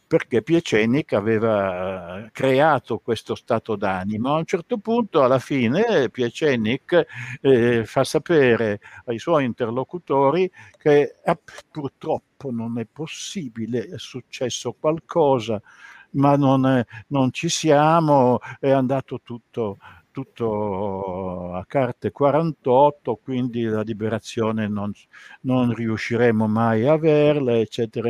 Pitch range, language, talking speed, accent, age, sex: 110-140 Hz, Italian, 110 wpm, native, 60-79, male